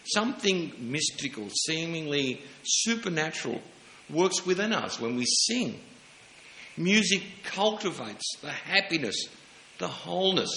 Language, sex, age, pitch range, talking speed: English, male, 60-79, 140-195 Hz, 90 wpm